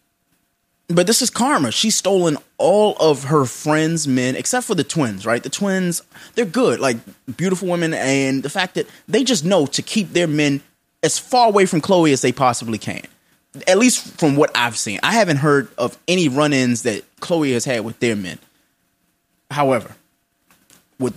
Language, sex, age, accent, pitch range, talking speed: English, male, 20-39, American, 135-215 Hz, 185 wpm